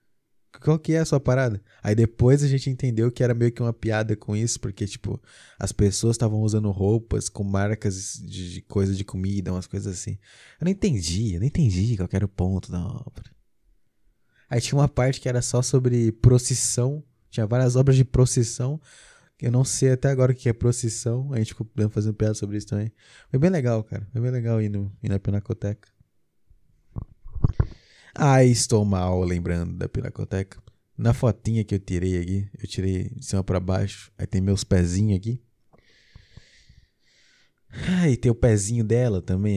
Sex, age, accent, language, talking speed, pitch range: male, 20-39, Brazilian, Portuguese, 185 wpm, 100-120 Hz